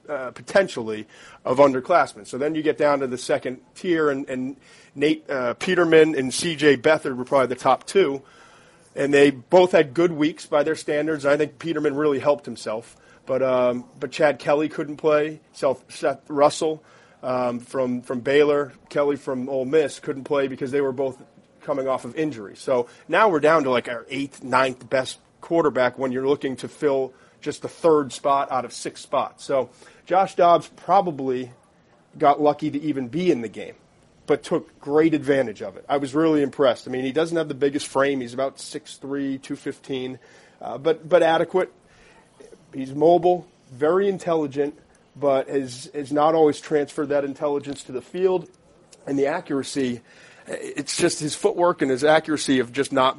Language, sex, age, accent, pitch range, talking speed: English, male, 30-49, American, 130-155 Hz, 180 wpm